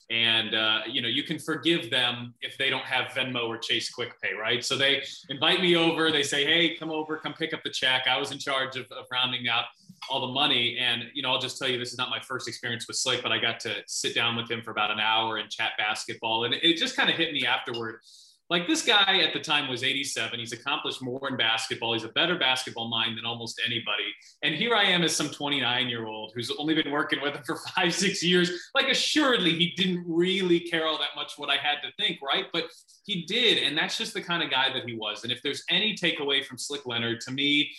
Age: 20-39